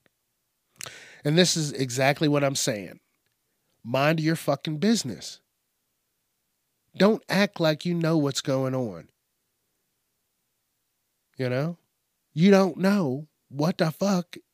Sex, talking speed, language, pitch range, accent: male, 110 wpm, English, 125-165 Hz, American